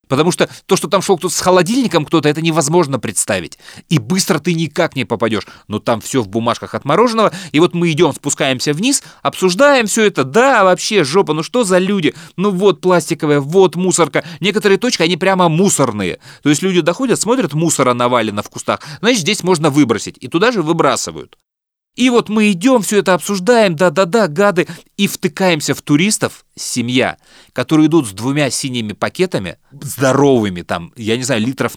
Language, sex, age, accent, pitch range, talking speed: Russian, male, 30-49, native, 125-185 Hz, 180 wpm